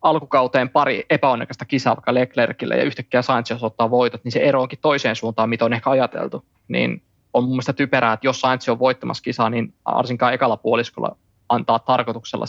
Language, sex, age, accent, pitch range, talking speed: Finnish, male, 20-39, native, 115-130 Hz, 180 wpm